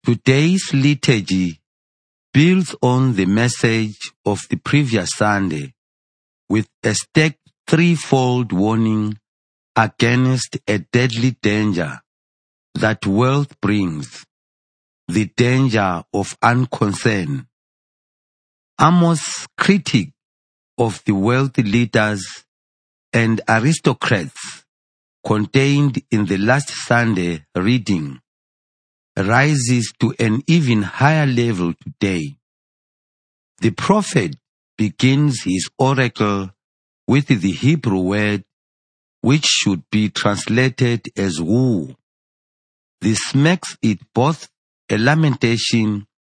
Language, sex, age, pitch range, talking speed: English, male, 50-69, 95-135 Hz, 90 wpm